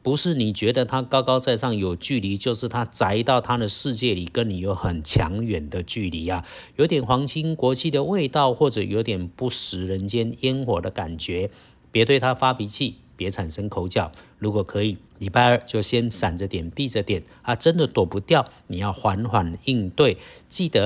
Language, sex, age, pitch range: Chinese, male, 50-69, 95-125 Hz